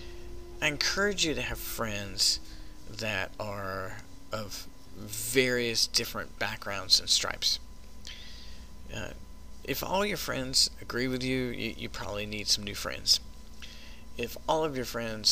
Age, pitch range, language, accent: 40-59, 80-130 Hz, English, American